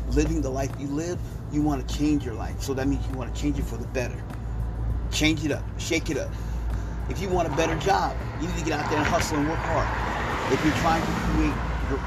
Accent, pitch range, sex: American, 115-140 Hz, male